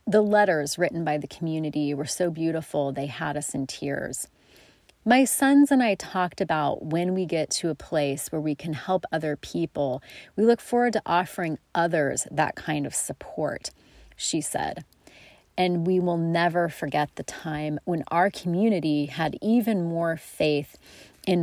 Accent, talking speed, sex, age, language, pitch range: American, 165 wpm, female, 30-49, English, 150-175 Hz